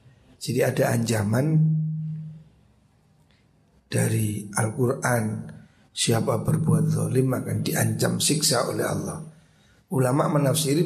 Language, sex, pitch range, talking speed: Indonesian, male, 130-160 Hz, 85 wpm